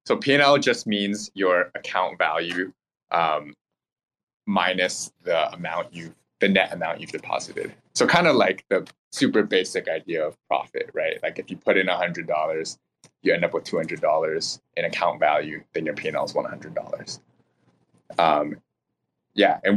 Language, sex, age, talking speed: English, male, 20-39, 160 wpm